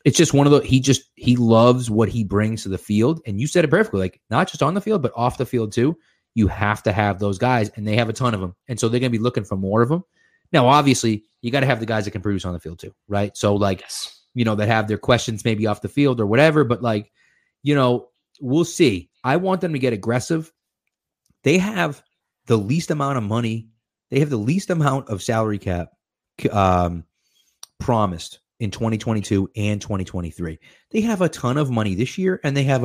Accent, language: American, English